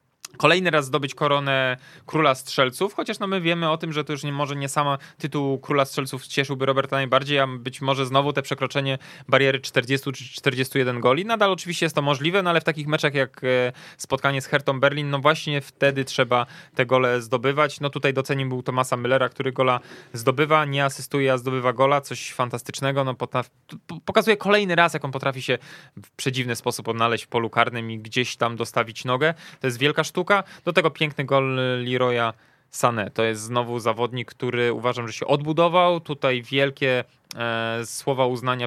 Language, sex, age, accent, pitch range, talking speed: Polish, male, 20-39, native, 125-150 Hz, 180 wpm